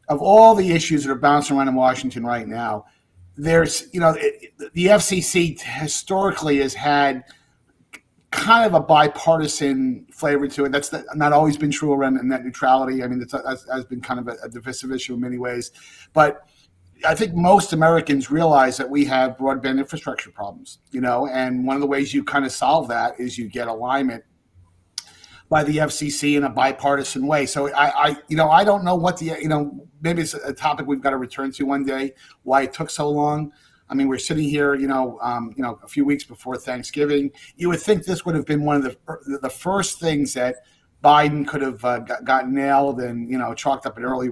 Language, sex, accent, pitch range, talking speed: English, male, American, 125-155 Hz, 210 wpm